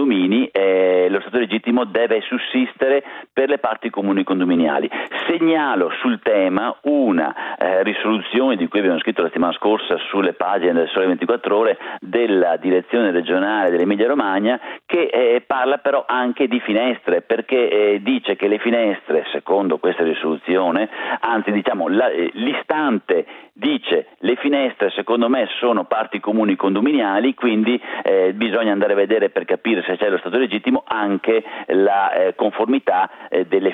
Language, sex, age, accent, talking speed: Italian, male, 50-69, native, 150 wpm